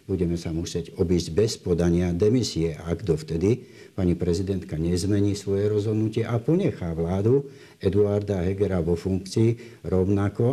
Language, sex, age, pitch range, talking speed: Slovak, male, 60-79, 85-120 Hz, 125 wpm